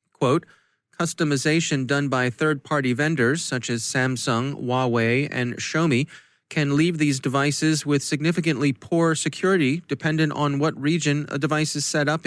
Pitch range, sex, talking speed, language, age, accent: 120-150 Hz, male, 135 wpm, English, 30-49, American